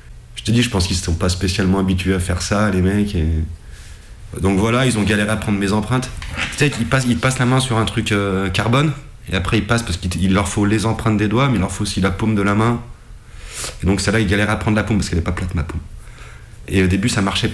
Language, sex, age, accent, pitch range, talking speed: French, male, 30-49, French, 85-105 Hz, 275 wpm